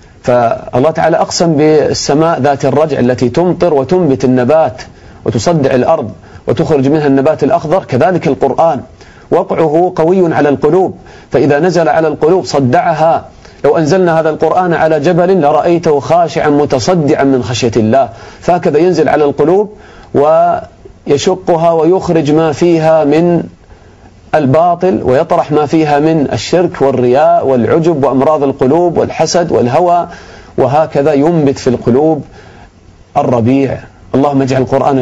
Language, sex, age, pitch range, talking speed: English, male, 40-59, 125-160 Hz, 115 wpm